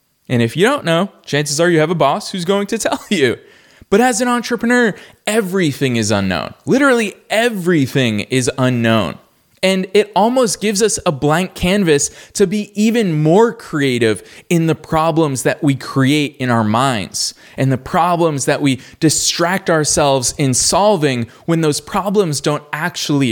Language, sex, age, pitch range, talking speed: English, male, 20-39, 125-175 Hz, 160 wpm